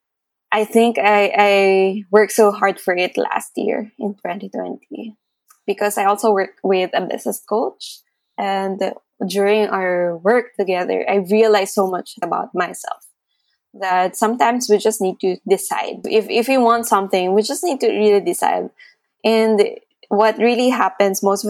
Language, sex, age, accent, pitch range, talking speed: English, female, 20-39, Filipino, 190-235 Hz, 155 wpm